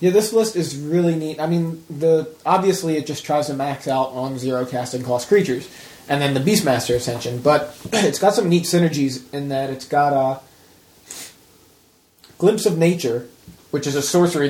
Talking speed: 180 wpm